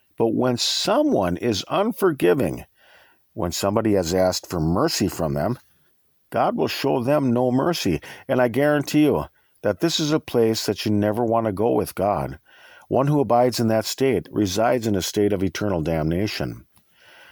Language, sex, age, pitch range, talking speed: English, male, 50-69, 100-145 Hz, 170 wpm